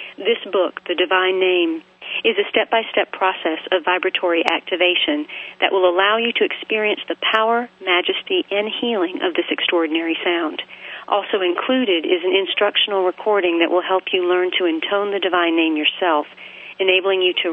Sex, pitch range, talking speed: female, 170-220 Hz, 160 wpm